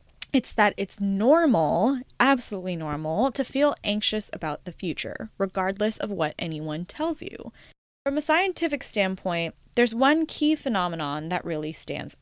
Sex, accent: female, American